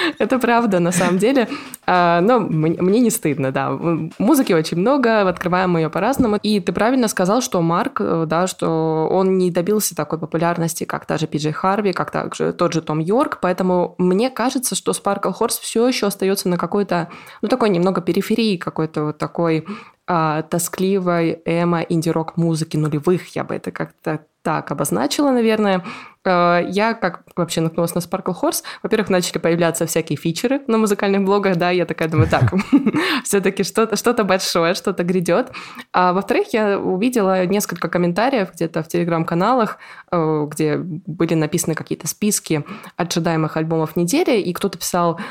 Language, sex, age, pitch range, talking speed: Russian, female, 20-39, 165-210 Hz, 160 wpm